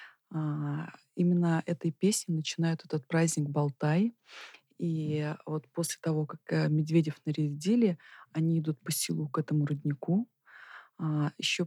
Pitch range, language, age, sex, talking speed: 150-175 Hz, Russian, 20-39, female, 115 wpm